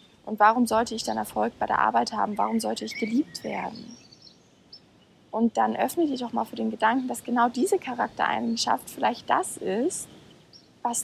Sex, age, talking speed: female, 20-39, 175 wpm